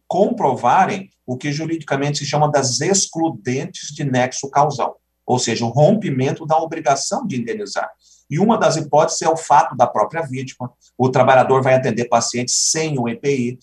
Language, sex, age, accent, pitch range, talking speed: Portuguese, male, 40-59, Brazilian, 125-165 Hz, 165 wpm